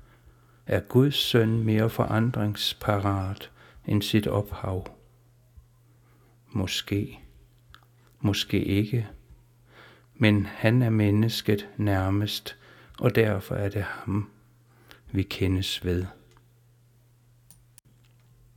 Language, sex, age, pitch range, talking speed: Danish, male, 60-79, 100-120 Hz, 80 wpm